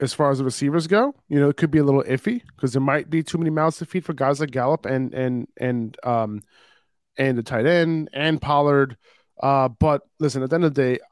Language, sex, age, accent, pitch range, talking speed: English, male, 20-39, American, 130-155 Hz, 250 wpm